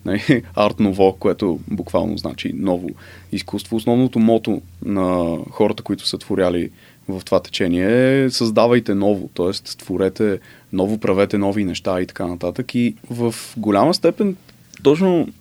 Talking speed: 130 wpm